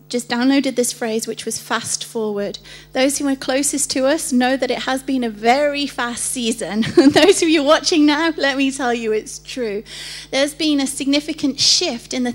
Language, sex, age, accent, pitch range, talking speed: English, female, 30-49, British, 220-285 Hz, 200 wpm